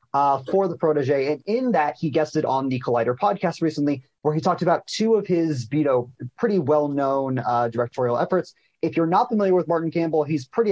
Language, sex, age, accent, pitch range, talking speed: English, male, 30-49, American, 130-170 Hz, 205 wpm